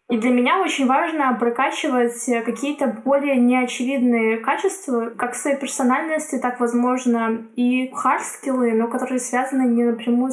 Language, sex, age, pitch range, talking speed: Russian, female, 10-29, 230-260 Hz, 130 wpm